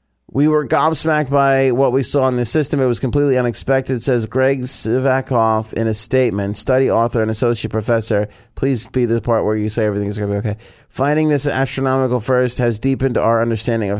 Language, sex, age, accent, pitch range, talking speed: English, male, 30-49, American, 105-135 Hz, 205 wpm